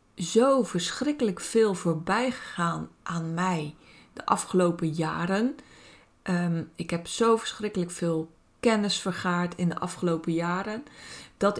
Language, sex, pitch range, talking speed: Dutch, female, 170-225 Hz, 115 wpm